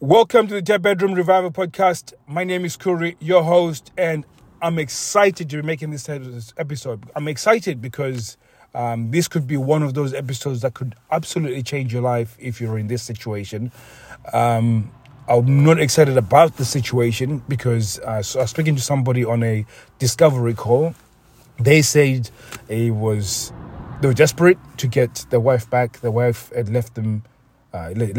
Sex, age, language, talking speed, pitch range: male, 30-49, English, 170 wpm, 110-140 Hz